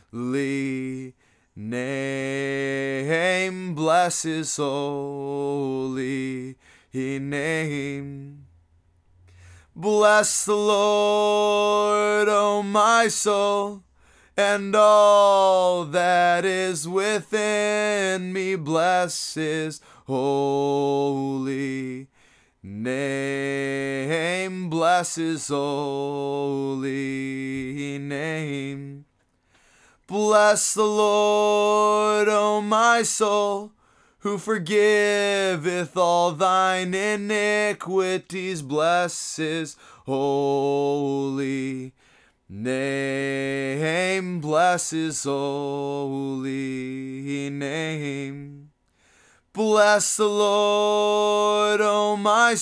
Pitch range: 135-205 Hz